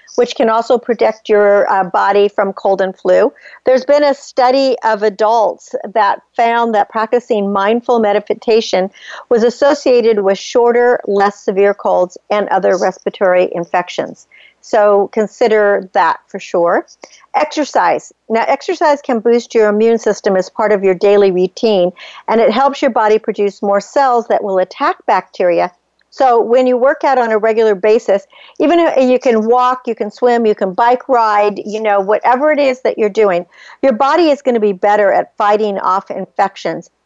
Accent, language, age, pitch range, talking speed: American, English, 50-69, 200-250 Hz, 170 wpm